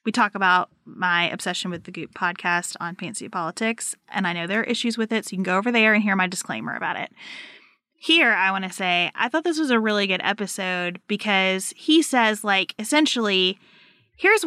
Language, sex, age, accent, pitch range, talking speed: English, female, 30-49, American, 190-240 Hz, 210 wpm